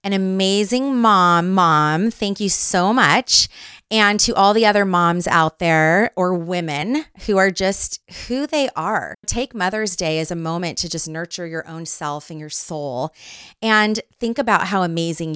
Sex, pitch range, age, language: female, 165-210 Hz, 30-49, English